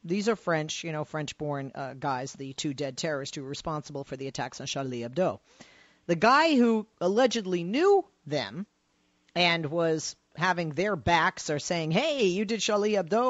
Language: English